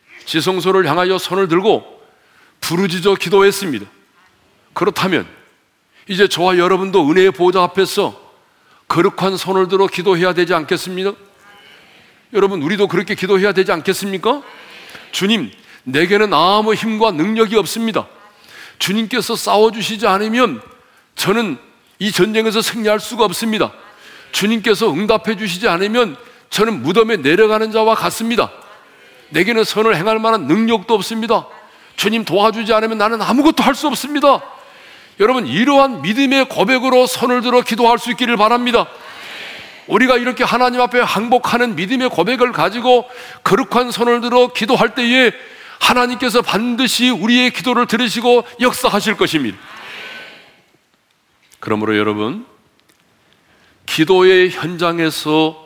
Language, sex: Korean, male